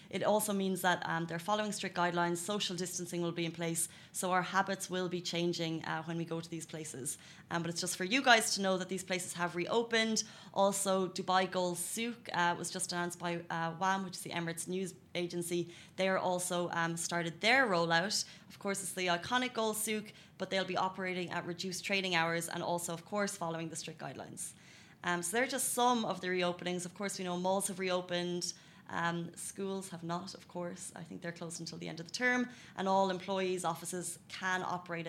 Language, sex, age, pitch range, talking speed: Arabic, female, 20-39, 170-200 Hz, 215 wpm